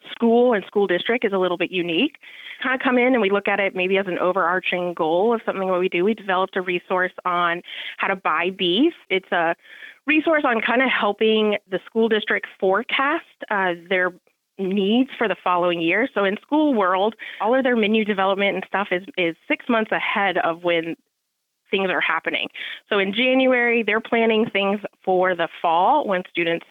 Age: 30-49